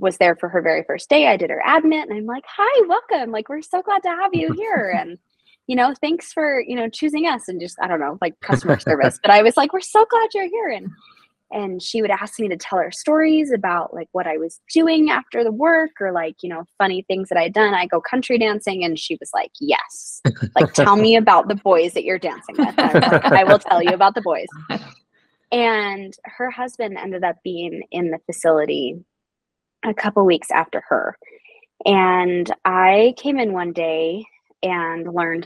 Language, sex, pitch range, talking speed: English, female, 175-250 Hz, 215 wpm